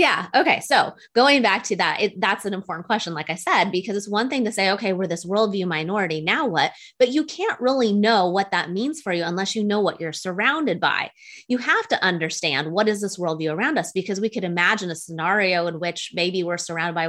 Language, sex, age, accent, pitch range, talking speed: English, female, 20-39, American, 165-210 Hz, 230 wpm